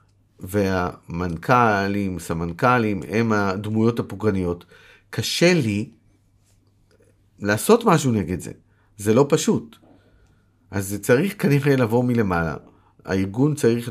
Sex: male